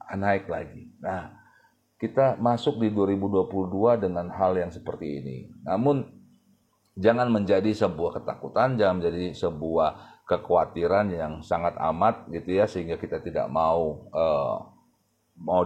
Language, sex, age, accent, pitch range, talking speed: Indonesian, male, 40-59, native, 95-120 Hz, 125 wpm